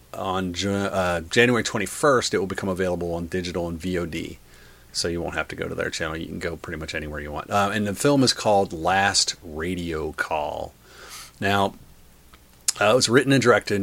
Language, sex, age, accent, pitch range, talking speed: English, male, 40-59, American, 75-100 Hz, 195 wpm